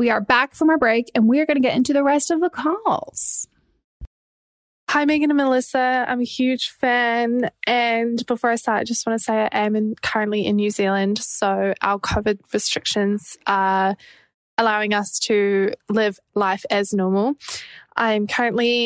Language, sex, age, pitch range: English, female, 20-39, 210-250 Hz